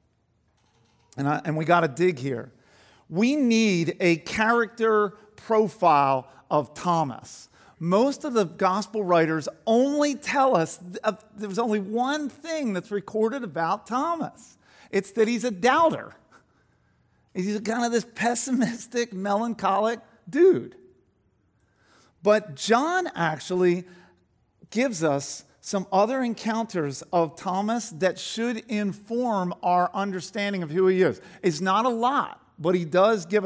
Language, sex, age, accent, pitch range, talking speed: English, male, 50-69, American, 165-225 Hz, 125 wpm